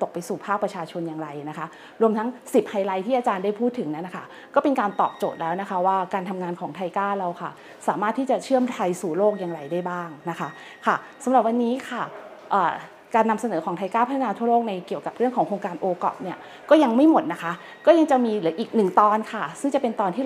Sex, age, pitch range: female, 30-49, 185-245 Hz